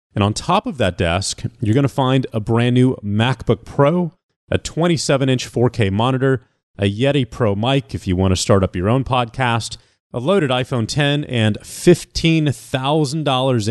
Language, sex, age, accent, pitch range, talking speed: English, male, 30-49, American, 110-135 Hz, 165 wpm